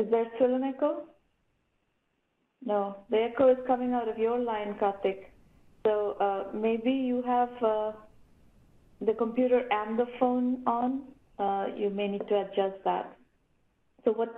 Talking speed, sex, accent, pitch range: 150 wpm, female, Indian, 200-245 Hz